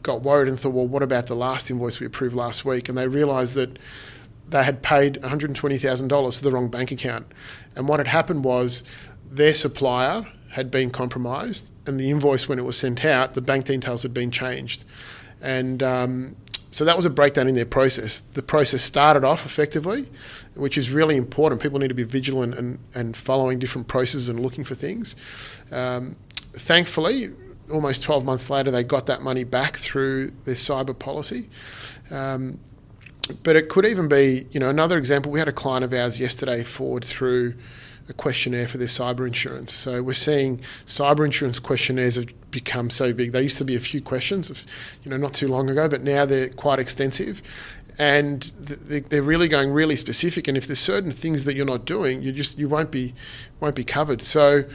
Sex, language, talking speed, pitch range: male, English, 195 wpm, 125-145 Hz